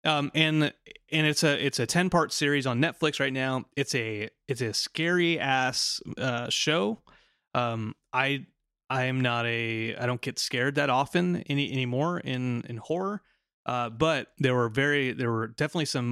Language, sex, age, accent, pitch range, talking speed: English, male, 30-49, American, 120-145 Hz, 180 wpm